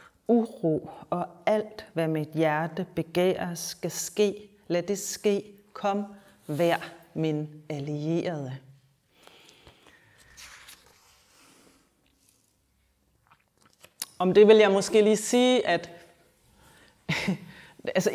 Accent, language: native, Danish